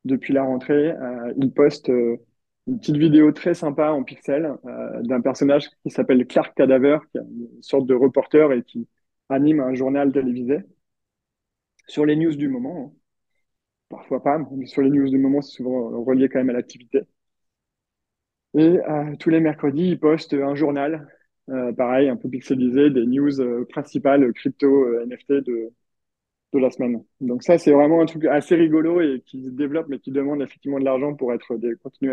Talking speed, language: 185 wpm, French